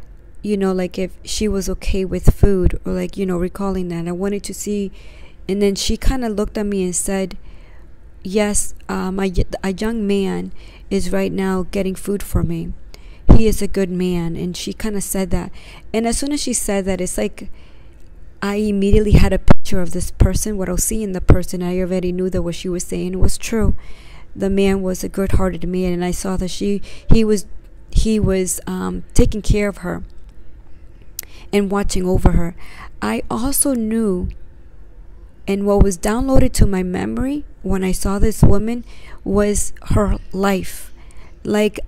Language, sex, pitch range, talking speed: English, female, 155-205 Hz, 185 wpm